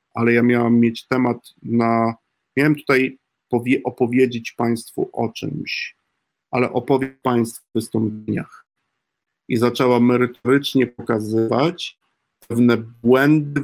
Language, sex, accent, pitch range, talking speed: Polish, male, native, 120-135 Hz, 100 wpm